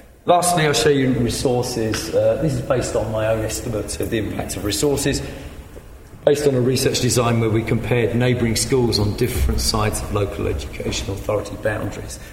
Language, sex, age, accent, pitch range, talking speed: English, male, 40-59, British, 95-120 Hz, 175 wpm